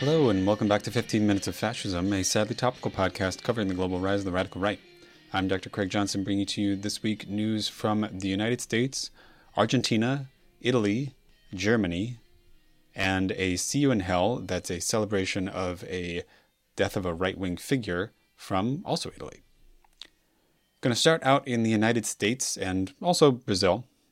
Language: English